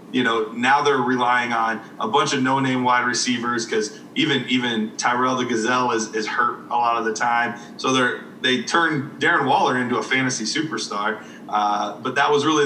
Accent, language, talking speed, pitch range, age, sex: American, English, 190 wpm, 120-170 Hz, 30-49, male